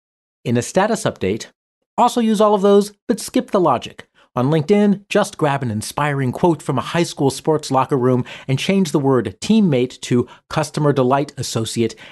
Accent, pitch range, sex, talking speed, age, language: American, 125-170 Hz, male, 180 wpm, 40-59, English